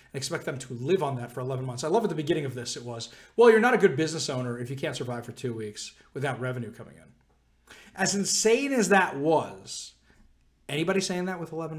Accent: American